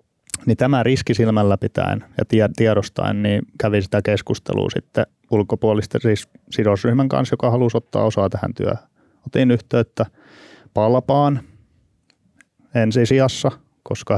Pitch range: 100-120 Hz